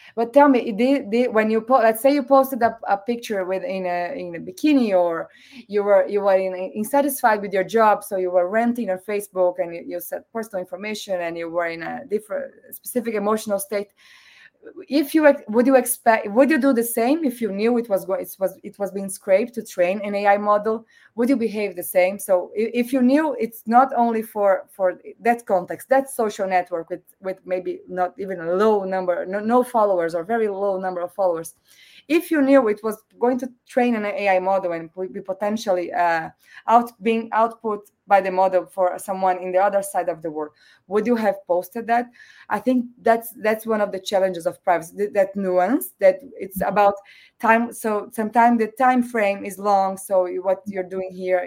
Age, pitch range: 20-39, 185-235 Hz